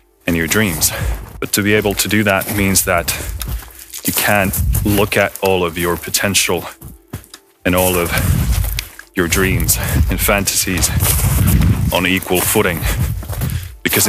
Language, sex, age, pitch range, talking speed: English, male, 30-49, 90-105 Hz, 130 wpm